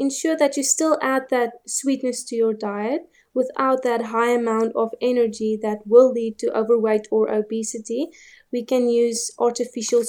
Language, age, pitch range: English, 20-39, 225-250 Hz